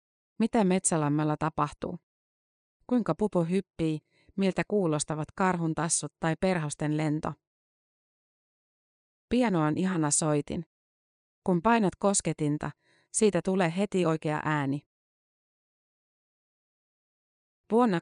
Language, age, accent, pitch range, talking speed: Finnish, 30-49, native, 155-190 Hz, 85 wpm